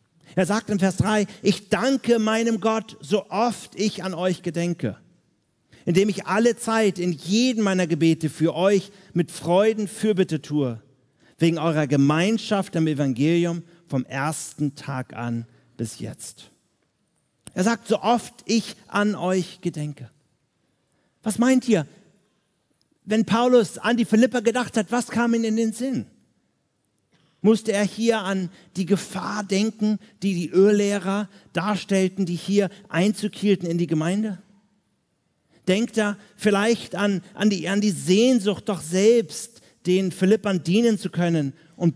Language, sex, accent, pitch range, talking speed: German, male, German, 165-215 Hz, 140 wpm